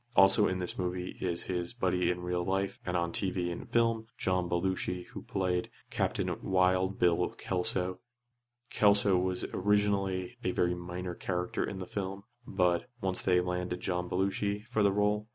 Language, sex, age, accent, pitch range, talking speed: English, male, 30-49, American, 90-105 Hz, 165 wpm